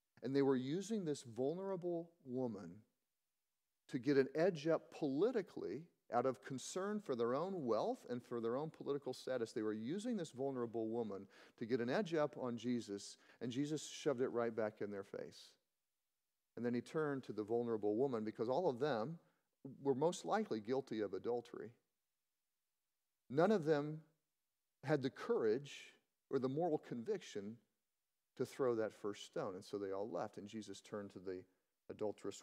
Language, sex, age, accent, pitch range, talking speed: English, male, 40-59, American, 110-160 Hz, 170 wpm